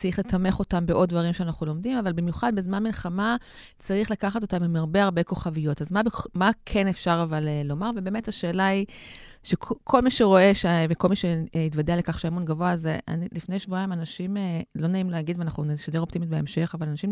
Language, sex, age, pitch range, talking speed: Hebrew, female, 30-49, 165-200 Hz, 180 wpm